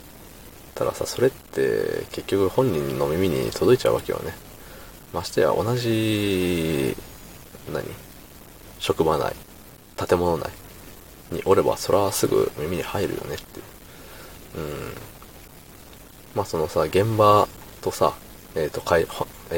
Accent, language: native, Japanese